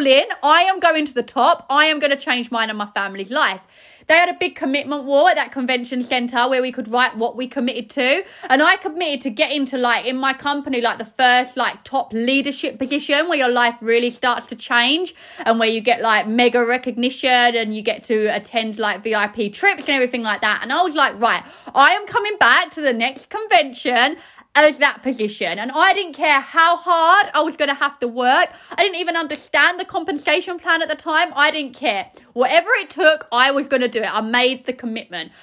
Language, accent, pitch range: English, British, 250-350 Hz